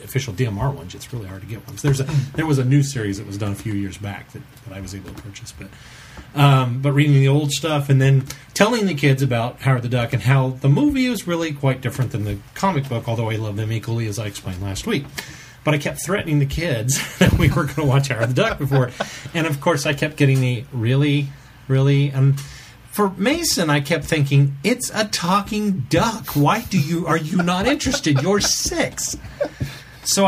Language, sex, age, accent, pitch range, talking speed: English, male, 30-49, American, 120-165 Hz, 225 wpm